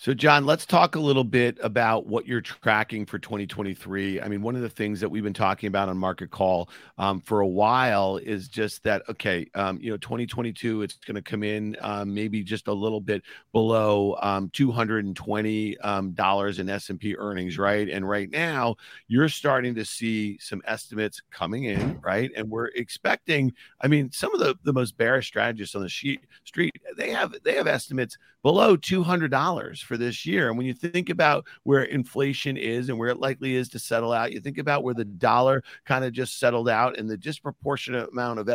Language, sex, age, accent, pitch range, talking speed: English, male, 40-59, American, 105-130 Hz, 195 wpm